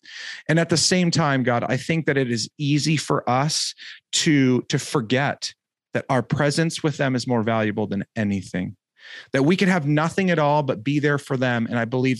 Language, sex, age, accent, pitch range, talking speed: English, male, 30-49, American, 120-160 Hz, 205 wpm